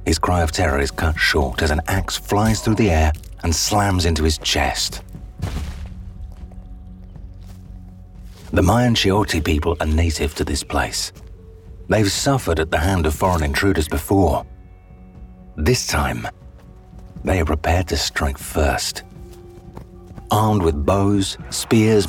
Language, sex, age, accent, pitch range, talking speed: English, male, 40-59, British, 75-100 Hz, 135 wpm